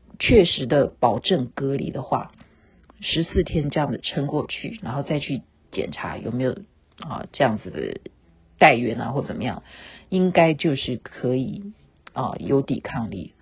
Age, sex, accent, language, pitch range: 50-69, female, native, Chinese, 135-185 Hz